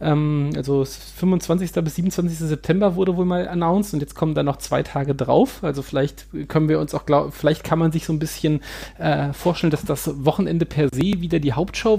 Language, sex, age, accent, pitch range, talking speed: German, male, 30-49, German, 130-160 Hz, 200 wpm